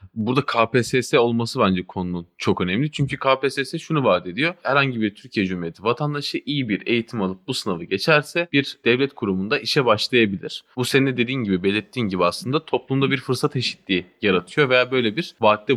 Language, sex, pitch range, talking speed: Turkish, male, 100-135 Hz, 175 wpm